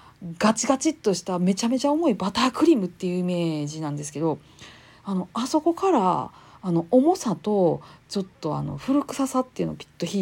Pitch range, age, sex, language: 165-255 Hz, 40-59, female, Japanese